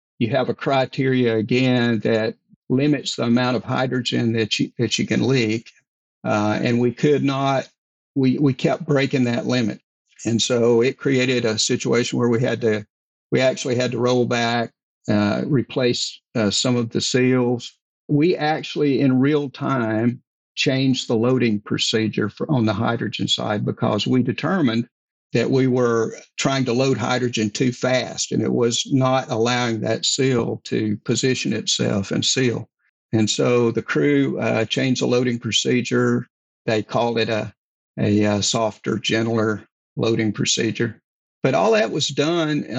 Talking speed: 155 wpm